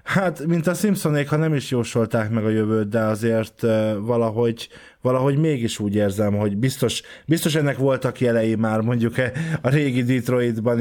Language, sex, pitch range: Hungarian, male, 105-125 Hz